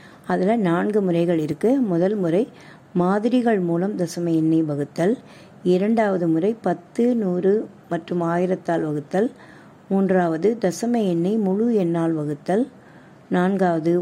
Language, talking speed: Tamil, 105 wpm